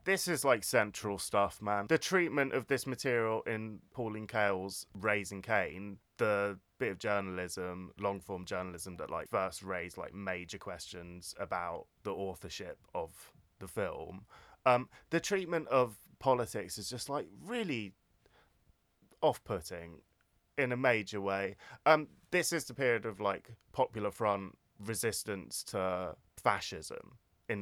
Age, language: 20-39, English